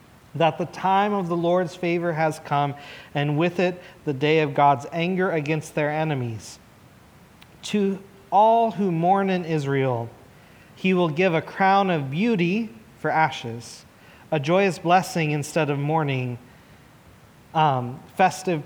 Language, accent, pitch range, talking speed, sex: English, American, 140-175 Hz, 140 wpm, male